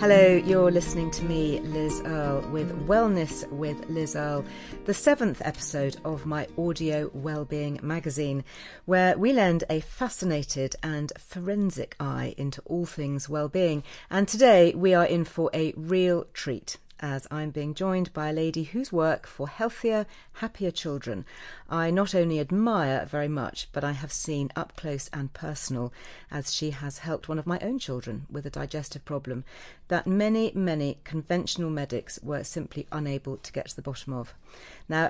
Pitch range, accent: 145-175 Hz, British